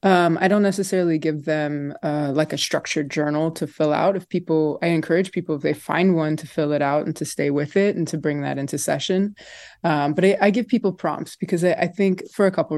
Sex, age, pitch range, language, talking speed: female, 20-39, 150-185 Hz, English, 245 wpm